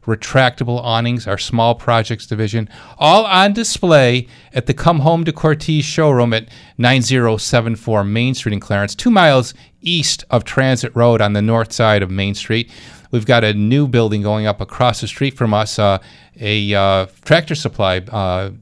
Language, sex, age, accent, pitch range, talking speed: English, male, 40-59, American, 110-150 Hz, 170 wpm